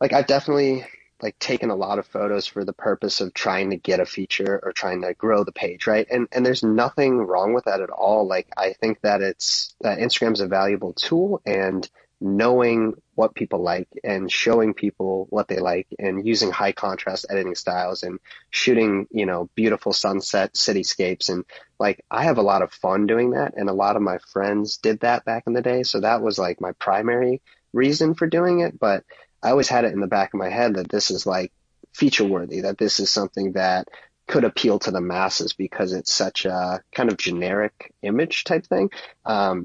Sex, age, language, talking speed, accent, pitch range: male, 30-49, English, 210 wpm, American, 95-120 Hz